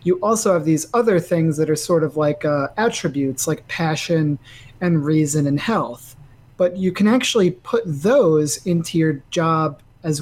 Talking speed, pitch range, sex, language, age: 170 wpm, 145-190 Hz, male, English, 30-49